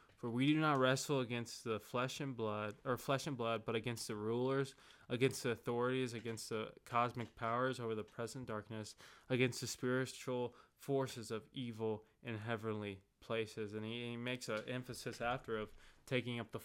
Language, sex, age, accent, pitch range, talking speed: English, male, 20-39, American, 105-130 Hz, 175 wpm